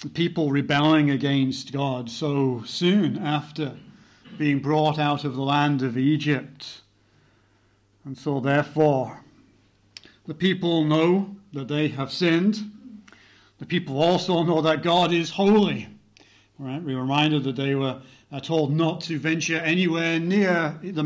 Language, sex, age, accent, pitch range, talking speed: English, male, 40-59, British, 130-165 Hz, 135 wpm